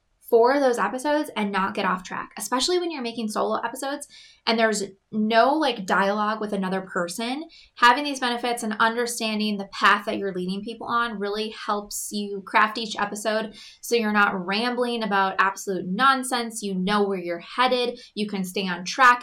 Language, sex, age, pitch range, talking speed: English, female, 20-39, 195-235 Hz, 180 wpm